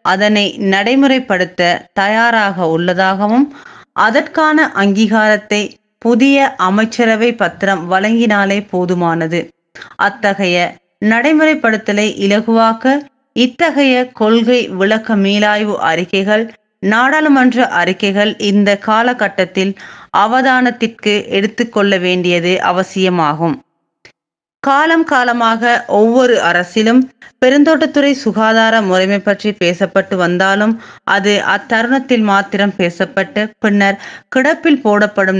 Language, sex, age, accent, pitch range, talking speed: Tamil, female, 30-49, native, 195-240 Hz, 70 wpm